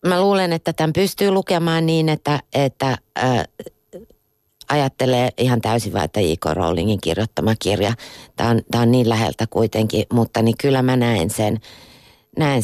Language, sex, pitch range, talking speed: Finnish, female, 105-130 Hz, 145 wpm